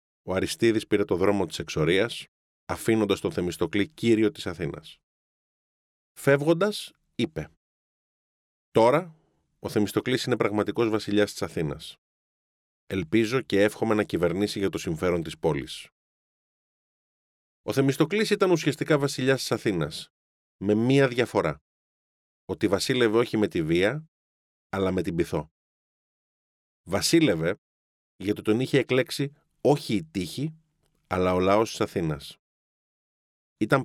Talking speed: 120 wpm